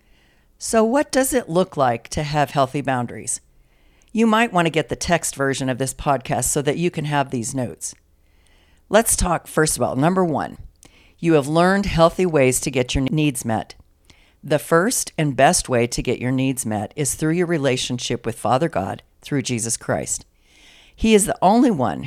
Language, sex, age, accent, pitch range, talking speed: English, female, 50-69, American, 125-175 Hz, 190 wpm